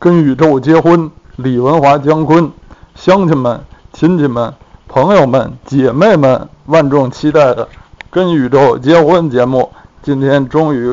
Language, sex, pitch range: Chinese, male, 105-145 Hz